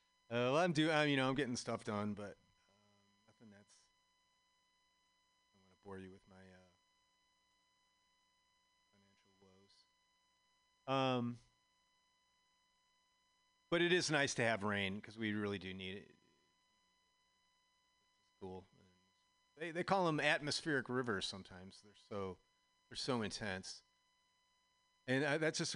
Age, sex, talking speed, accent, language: 40-59, male, 135 wpm, American, English